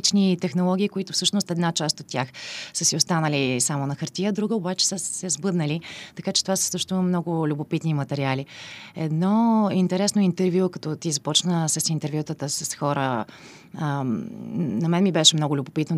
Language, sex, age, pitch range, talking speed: Bulgarian, female, 30-49, 150-185 Hz, 160 wpm